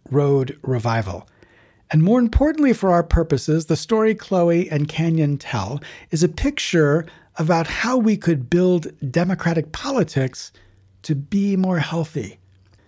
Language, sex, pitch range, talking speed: English, male, 140-190 Hz, 130 wpm